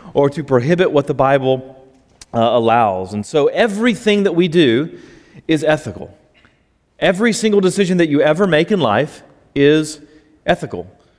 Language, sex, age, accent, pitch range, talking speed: English, male, 30-49, American, 130-175 Hz, 145 wpm